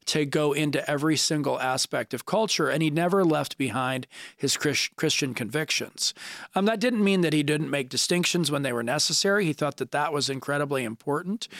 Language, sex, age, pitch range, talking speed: English, male, 40-59, 135-165 Hz, 185 wpm